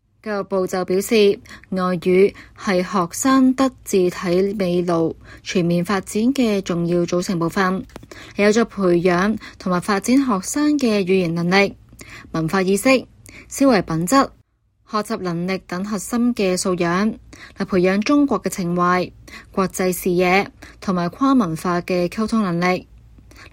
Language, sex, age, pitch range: Chinese, female, 20-39, 180-225 Hz